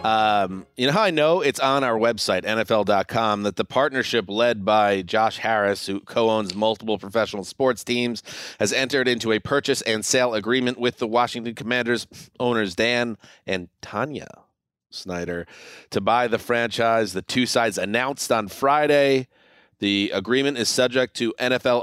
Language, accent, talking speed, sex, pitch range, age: English, American, 155 wpm, male, 110-135 Hz, 30-49